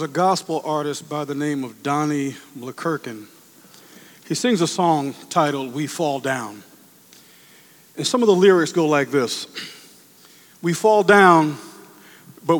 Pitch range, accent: 145-180 Hz, American